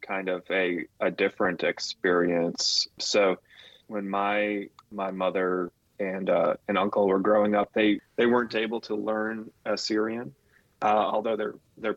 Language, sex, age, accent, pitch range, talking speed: English, male, 30-49, American, 95-110 Hz, 145 wpm